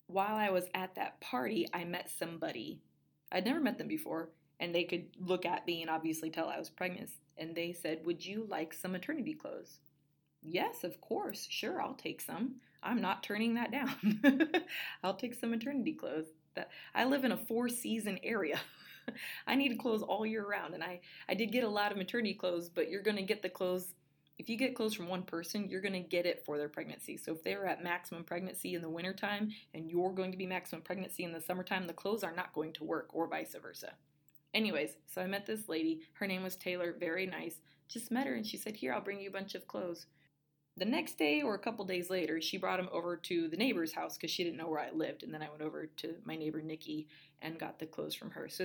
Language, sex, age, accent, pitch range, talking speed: English, female, 20-39, American, 165-215 Hz, 235 wpm